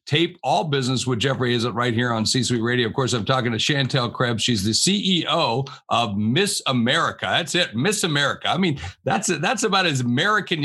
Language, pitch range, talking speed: English, 130-165 Hz, 210 wpm